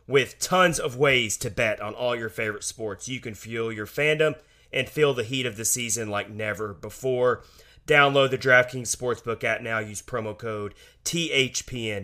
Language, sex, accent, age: English, male, American, 30-49